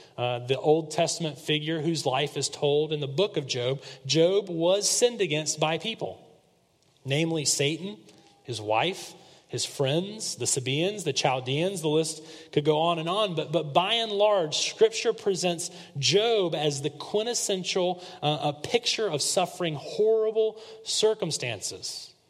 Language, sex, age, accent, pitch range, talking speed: English, male, 30-49, American, 135-175 Hz, 150 wpm